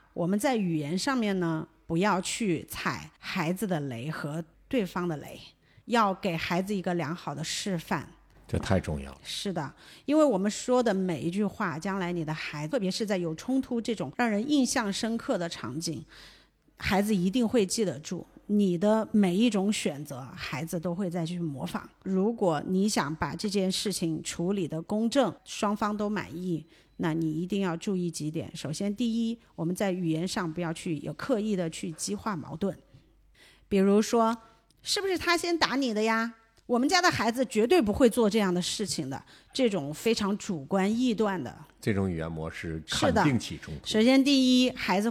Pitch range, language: 165-220 Hz, Chinese